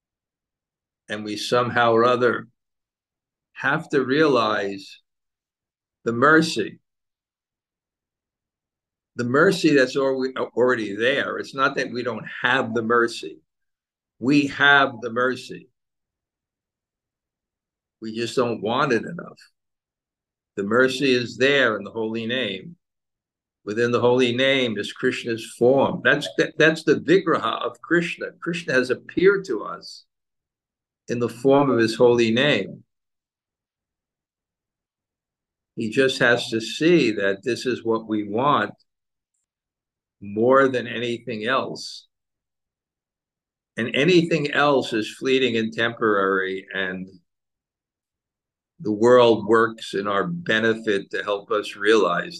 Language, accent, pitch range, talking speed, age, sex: English, American, 105-135 Hz, 115 wpm, 60-79, male